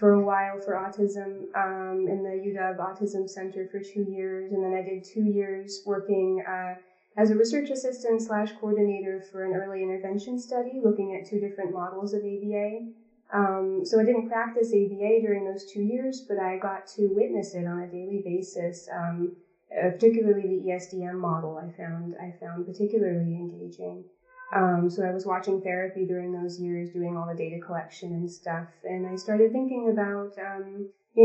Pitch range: 185-210 Hz